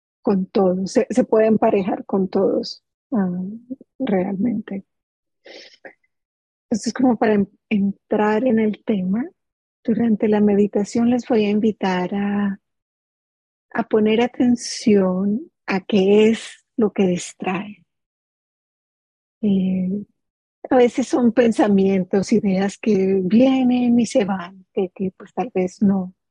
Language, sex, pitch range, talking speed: English, female, 190-235 Hz, 130 wpm